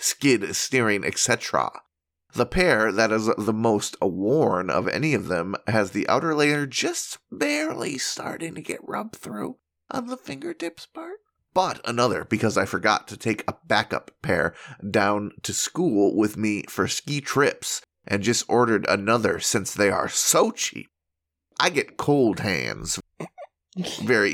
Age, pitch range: 30-49, 95-135 Hz